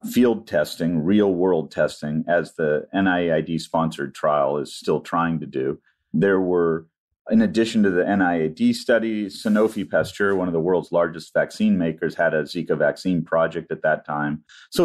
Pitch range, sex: 90-130 Hz, male